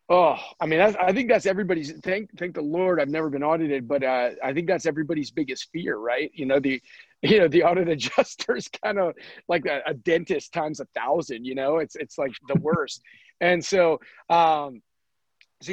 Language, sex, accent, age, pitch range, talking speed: English, male, American, 30-49, 135-180 Hz, 200 wpm